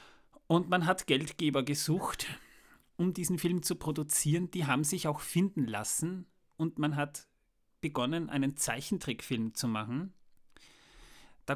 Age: 30-49